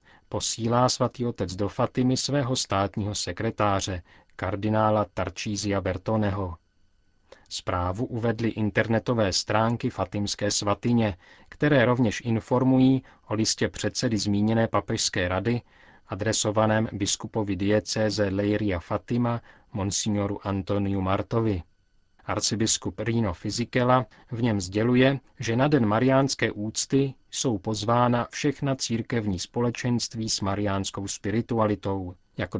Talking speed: 100 wpm